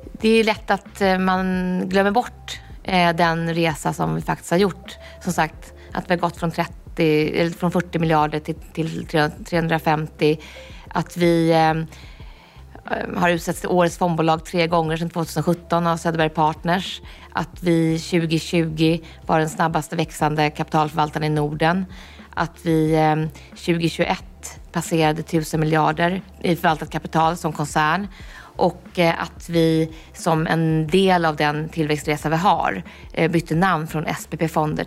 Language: Swedish